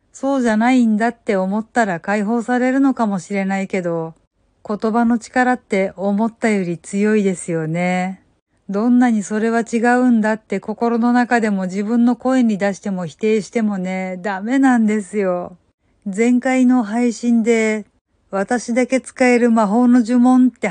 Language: Japanese